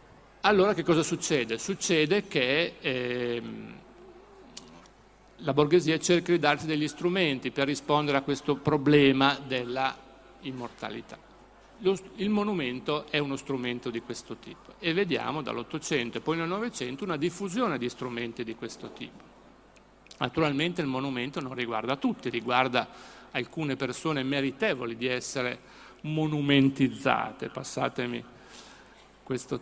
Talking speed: 120 wpm